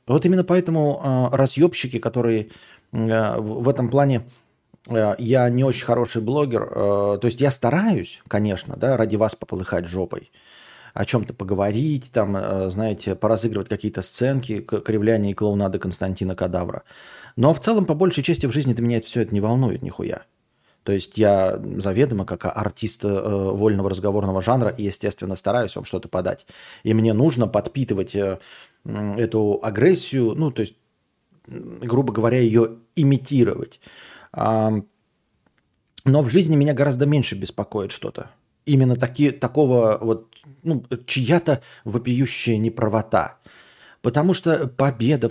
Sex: male